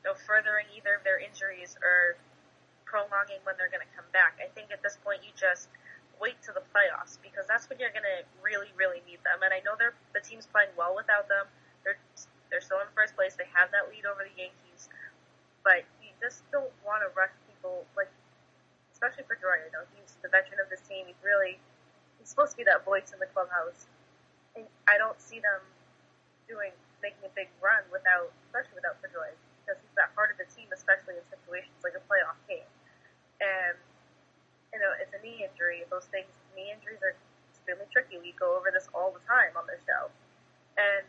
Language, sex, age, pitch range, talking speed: English, female, 20-39, 185-240 Hz, 205 wpm